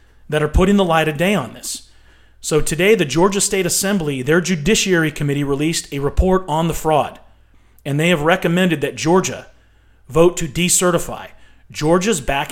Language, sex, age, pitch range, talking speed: English, male, 30-49, 130-175 Hz, 170 wpm